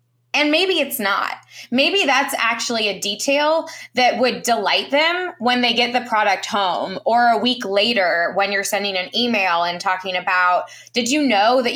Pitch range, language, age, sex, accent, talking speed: 200-275 Hz, English, 20-39, female, American, 180 wpm